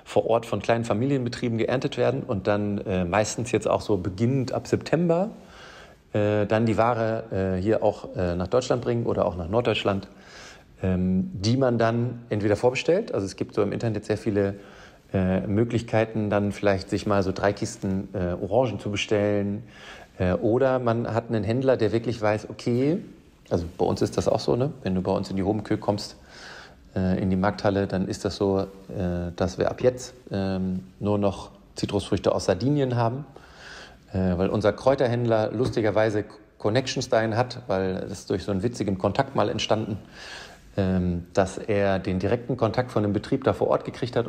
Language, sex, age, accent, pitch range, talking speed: German, male, 40-59, German, 100-115 Hz, 175 wpm